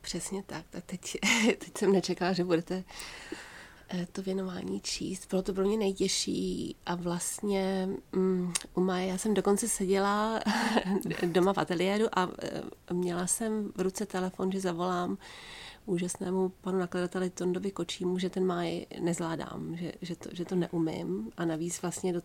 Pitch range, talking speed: 175-190 Hz, 150 wpm